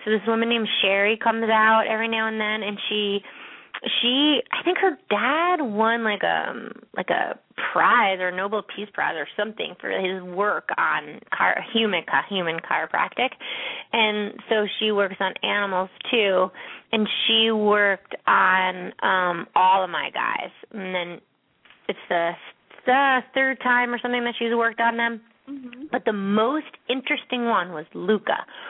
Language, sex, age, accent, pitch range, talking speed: English, female, 20-39, American, 195-240 Hz, 155 wpm